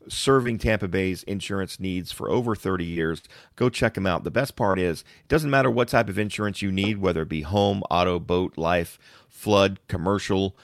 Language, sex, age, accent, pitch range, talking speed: English, male, 40-59, American, 90-120 Hz, 195 wpm